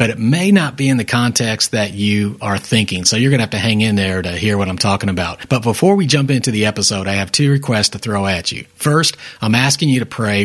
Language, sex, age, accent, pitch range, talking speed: English, male, 40-59, American, 100-125 Hz, 275 wpm